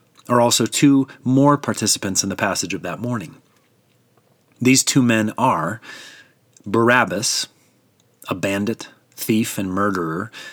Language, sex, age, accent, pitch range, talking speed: English, male, 30-49, American, 100-125 Hz, 120 wpm